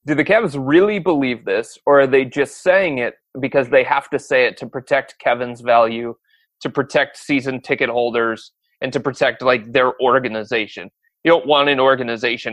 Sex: male